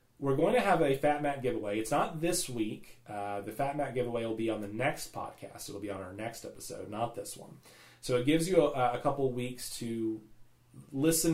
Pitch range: 110-140 Hz